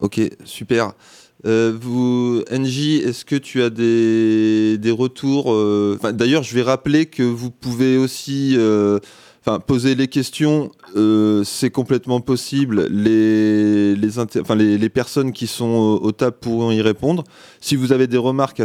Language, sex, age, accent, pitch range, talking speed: French, male, 20-39, French, 110-135 Hz, 150 wpm